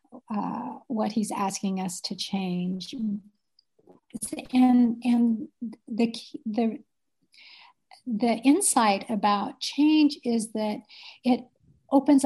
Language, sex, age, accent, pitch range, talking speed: English, female, 50-69, American, 210-255 Hz, 95 wpm